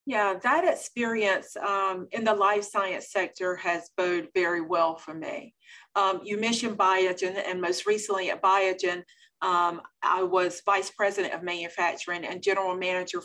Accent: American